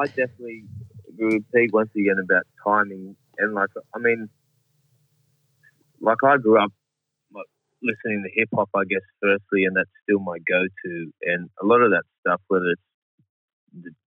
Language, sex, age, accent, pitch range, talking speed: English, male, 20-39, Australian, 95-110 Hz, 165 wpm